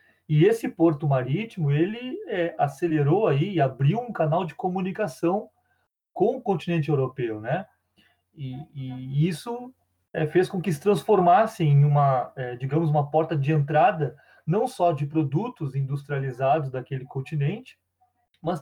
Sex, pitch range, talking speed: male, 140-175 Hz, 140 wpm